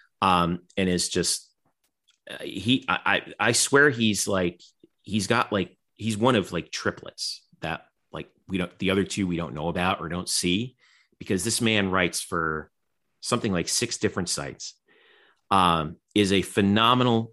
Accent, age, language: American, 30-49, English